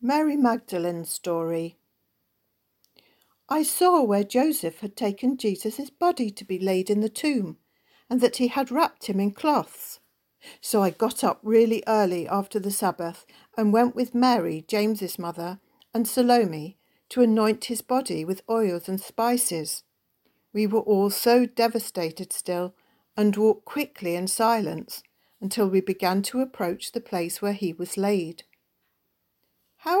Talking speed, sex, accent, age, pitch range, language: 145 wpm, female, British, 50-69, 185-240 Hz, English